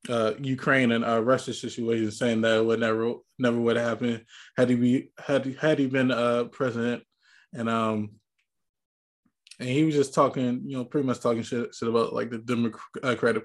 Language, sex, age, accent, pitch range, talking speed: English, male, 20-39, American, 115-135 Hz, 190 wpm